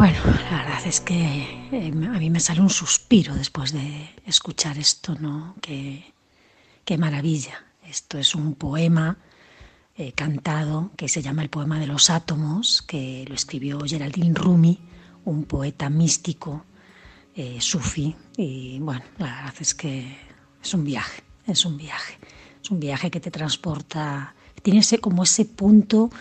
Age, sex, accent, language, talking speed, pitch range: 40-59, female, Spanish, Spanish, 150 wpm, 140-175 Hz